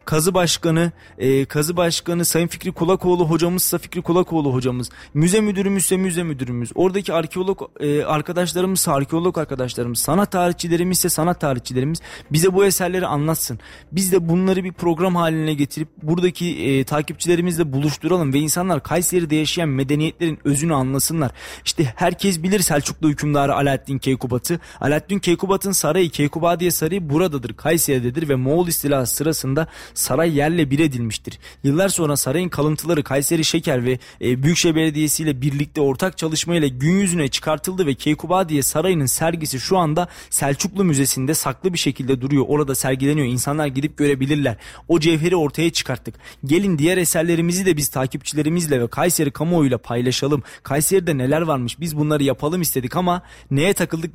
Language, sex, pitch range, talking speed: Turkish, male, 140-175 Hz, 145 wpm